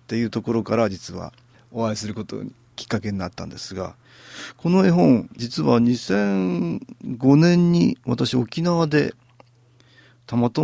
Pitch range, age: 95-125 Hz, 40-59